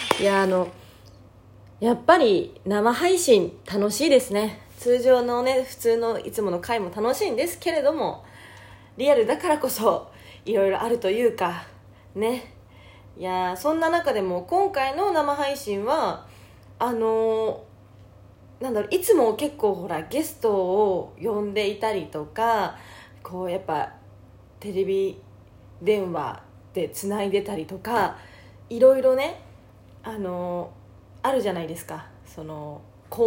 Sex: female